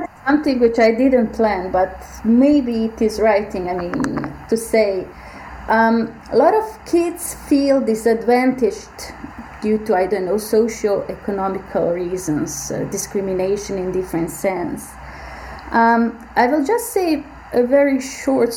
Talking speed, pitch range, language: 135 wpm, 200-245 Hz, English